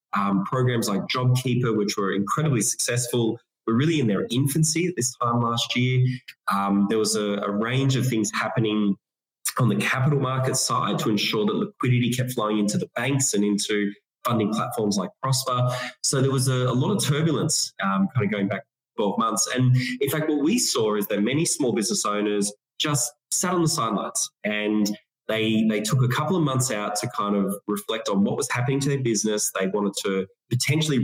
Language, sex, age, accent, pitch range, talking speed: English, male, 20-39, Australian, 105-135 Hz, 200 wpm